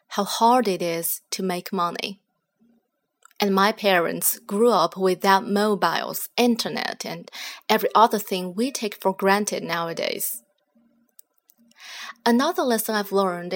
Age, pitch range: 20-39, 190-245 Hz